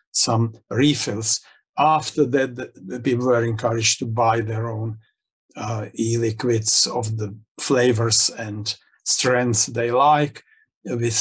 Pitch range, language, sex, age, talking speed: 115-135 Hz, English, male, 50-69, 120 wpm